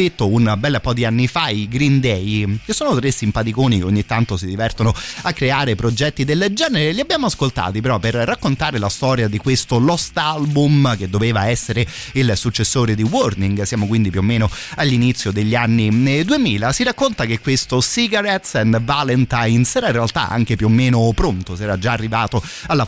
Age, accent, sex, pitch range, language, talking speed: 30-49, native, male, 110-135 Hz, Italian, 190 wpm